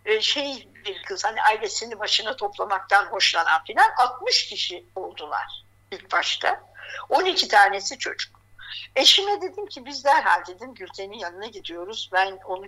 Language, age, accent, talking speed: Turkish, 60-79, native, 135 wpm